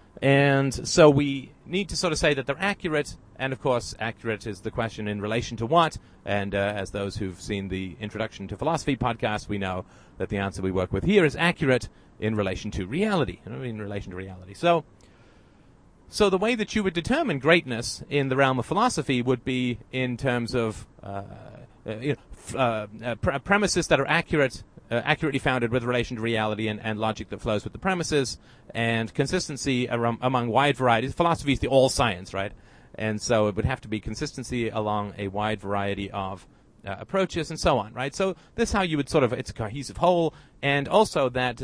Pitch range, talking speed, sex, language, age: 105-145 Hz, 195 wpm, male, English, 40-59